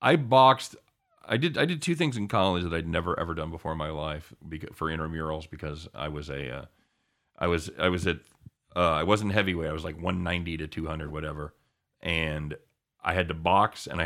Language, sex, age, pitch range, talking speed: English, male, 40-59, 80-105 Hz, 220 wpm